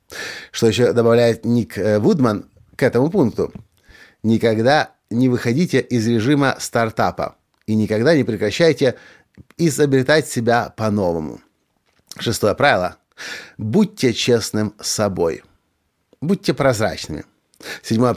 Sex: male